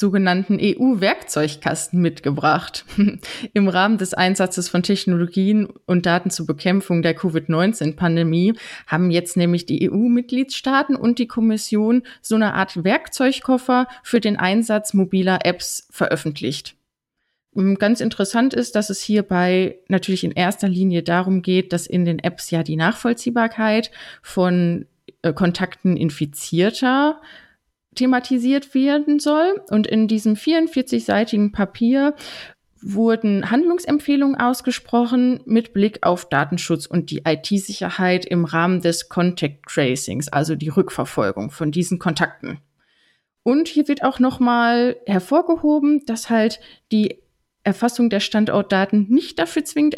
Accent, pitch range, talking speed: German, 175-245 Hz, 120 wpm